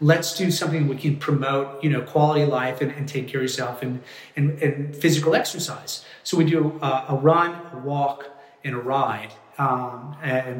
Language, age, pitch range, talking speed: English, 40-59, 125-155 Hz, 200 wpm